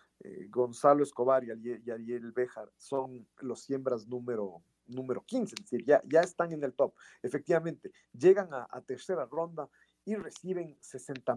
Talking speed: 150 wpm